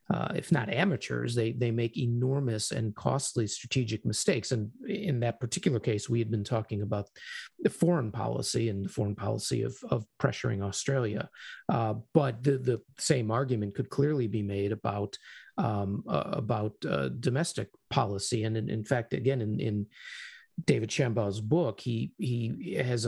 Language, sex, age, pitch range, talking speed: English, male, 50-69, 110-135 Hz, 165 wpm